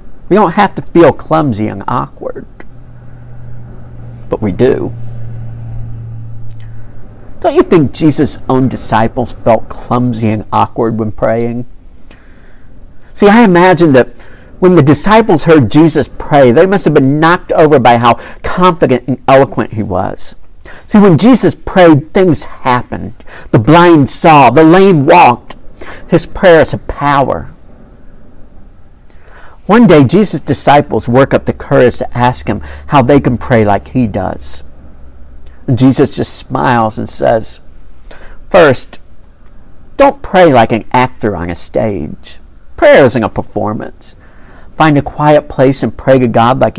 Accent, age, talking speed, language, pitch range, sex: American, 50-69, 135 wpm, English, 110-150 Hz, male